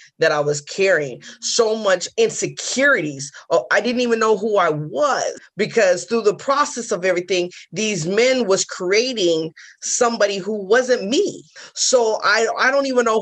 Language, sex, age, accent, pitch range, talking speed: English, female, 20-39, American, 180-230 Hz, 155 wpm